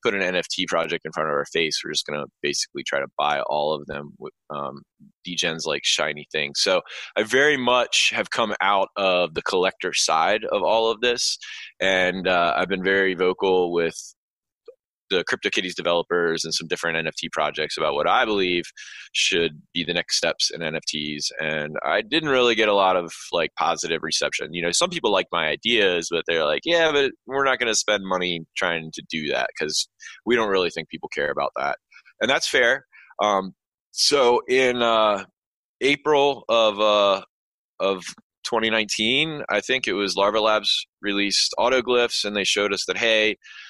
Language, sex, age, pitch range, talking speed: English, male, 20-39, 90-115 Hz, 185 wpm